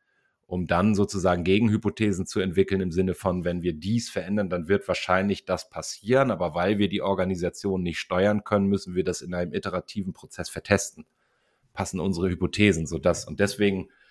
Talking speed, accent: 175 wpm, German